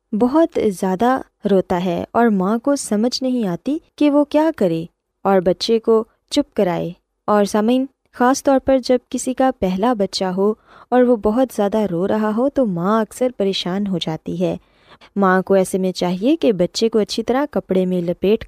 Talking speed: 185 wpm